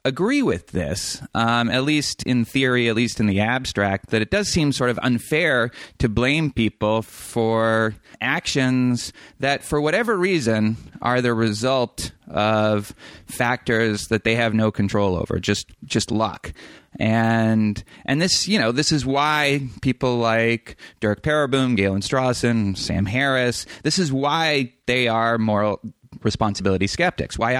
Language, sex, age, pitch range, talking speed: English, male, 30-49, 105-130 Hz, 150 wpm